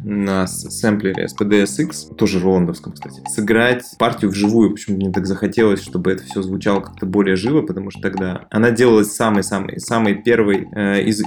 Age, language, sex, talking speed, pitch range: 20-39, Russian, male, 155 wpm, 100-115 Hz